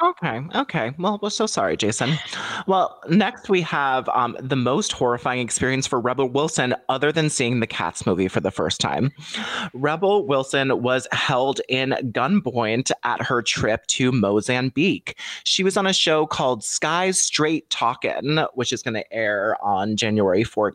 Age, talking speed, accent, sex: 30-49, 160 wpm, American, male